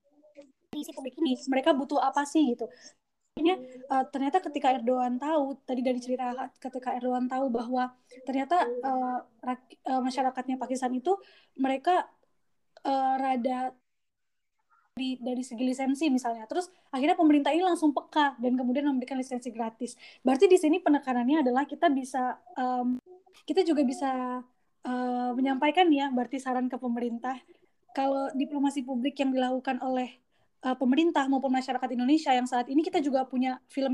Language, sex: Indonesian, female